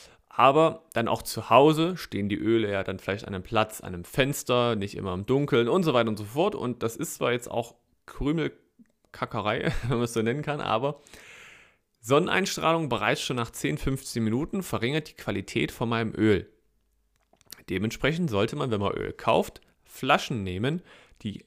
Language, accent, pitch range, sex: German, German, 100-130 Hz, male